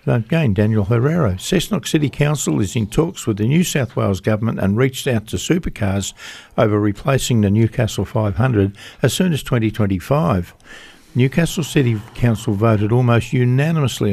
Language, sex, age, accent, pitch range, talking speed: English, male, 60-79, Australian, 105-135 Hz, 150 wpm